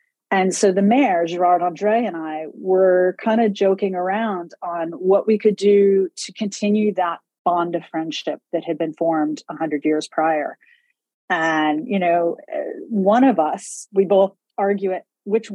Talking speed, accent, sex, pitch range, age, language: 160 wpm, American, female, 170-220 Hz, 40-59, English